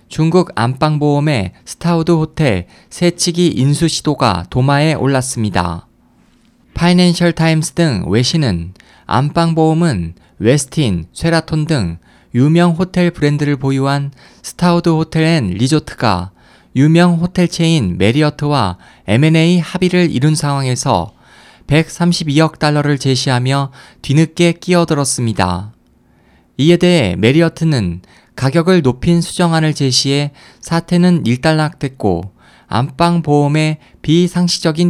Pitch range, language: 125-165 Hz, Korean